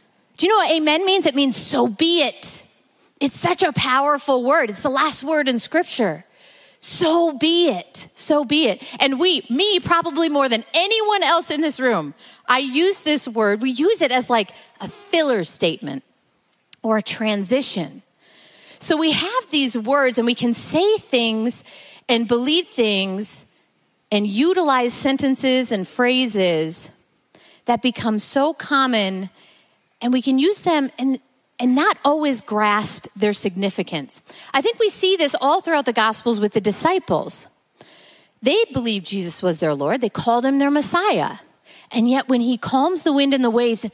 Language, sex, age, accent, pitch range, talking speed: English, female, 30-49, American, 220-310 Hz, 165 wpm